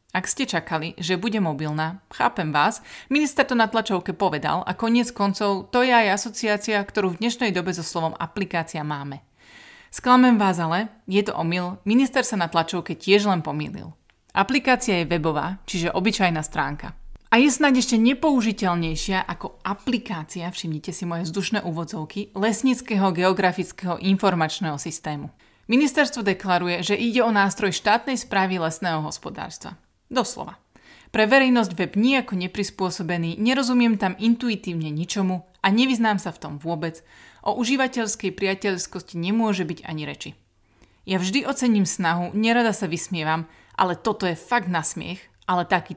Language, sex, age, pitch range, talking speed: Slovak, female, 30-49, 170-225 Hz, 145 wpm